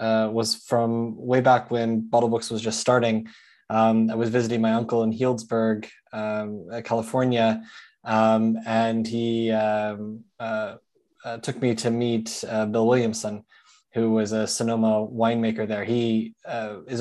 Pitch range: 110-115 Hz